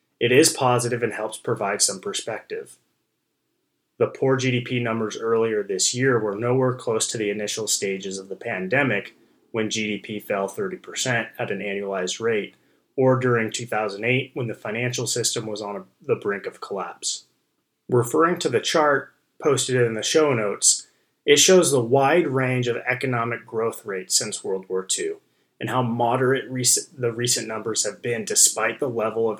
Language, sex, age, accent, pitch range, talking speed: English, male, 30-49, American, 110-130 Hz, 165 wpm